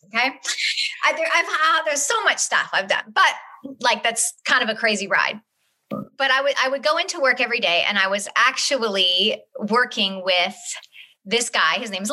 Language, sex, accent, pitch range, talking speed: English, female, American, 210-290 Hz, 185 wpm